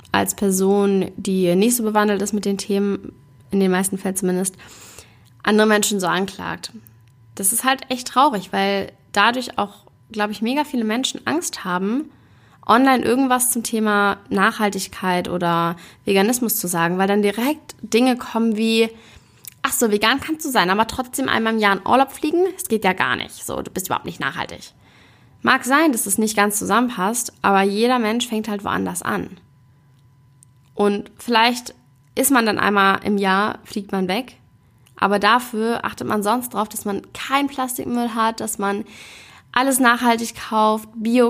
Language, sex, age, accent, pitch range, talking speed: German, female, 20-39, German, 195-240 Hz, 170 wpm